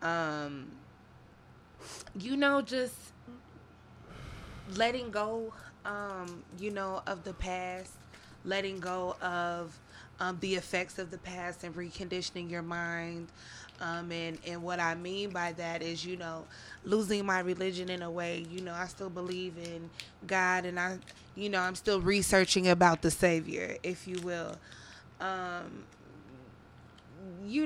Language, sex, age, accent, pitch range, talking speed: English, female, 20-39, American, 165-185 Hz, 140 wpm